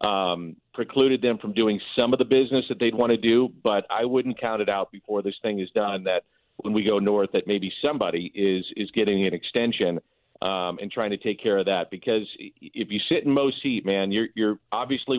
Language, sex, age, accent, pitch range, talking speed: English, male, 40-59, American, 100-120 Hz, 225 wpm